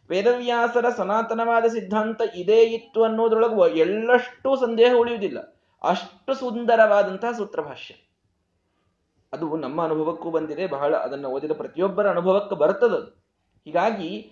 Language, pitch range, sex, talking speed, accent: Kannada, 180-230 Hz, male, 100 wpm, native